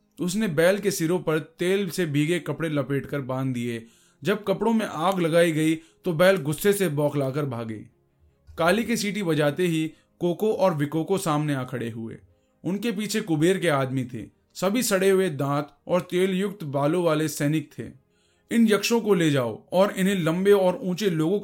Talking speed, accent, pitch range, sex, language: 180 wpm, native, 135-185 Hz, male, Hindi